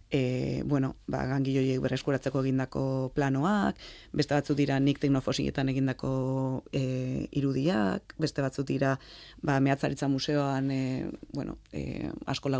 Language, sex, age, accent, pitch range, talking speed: Spanish, female, 20-39, Spanish, 130-155 Hz, 120 wpm